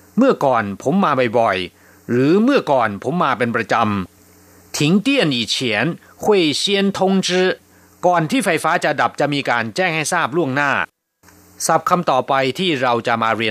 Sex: male